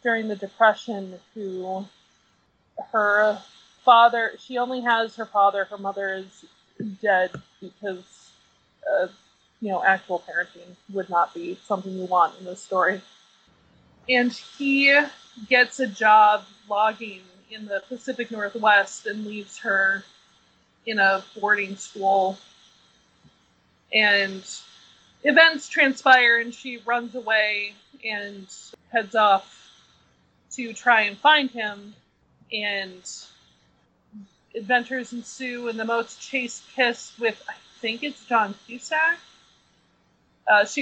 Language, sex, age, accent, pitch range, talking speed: English, female, 20-39, American, 195-245 Hz, 115 wpm